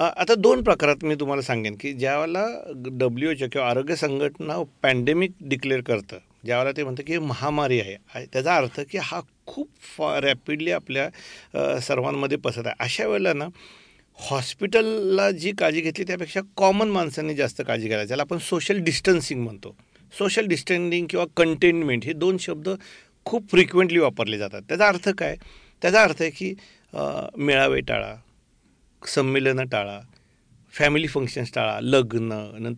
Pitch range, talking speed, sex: 130-180 Hz, 145 wpm, male